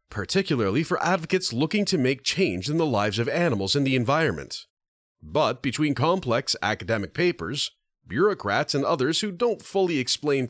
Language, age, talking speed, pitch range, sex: English, 40-59, 155 wpm, 120-185 Hz, male